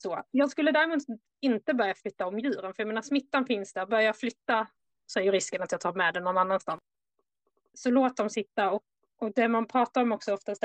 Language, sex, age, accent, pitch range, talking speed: Swedish, female, 20-39, native, 195-240 Hz, 225 wpm